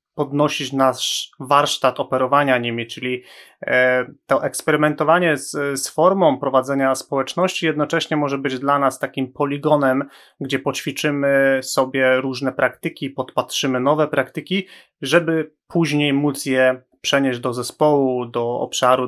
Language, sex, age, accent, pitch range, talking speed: Polish, male, 30-49, native, 130-150 Hz, 115 wpm